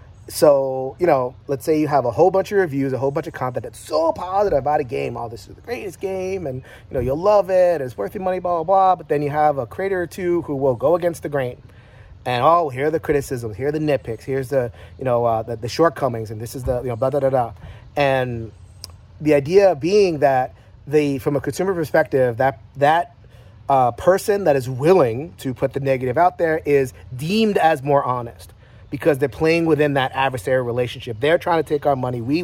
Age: 30-49